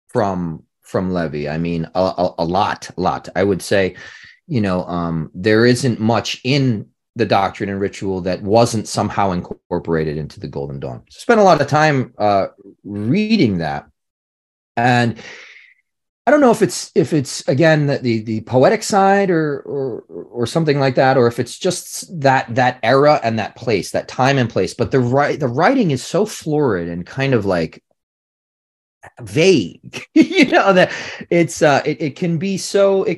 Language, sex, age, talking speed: English, male, 30-49, 175 wpm